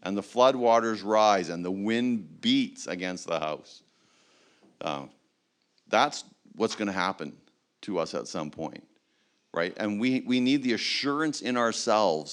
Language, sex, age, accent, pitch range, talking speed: English, male, 50-69, American, 95-120 Hz, 150 wpm